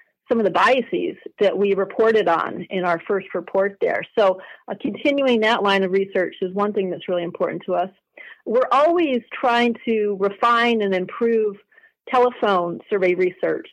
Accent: American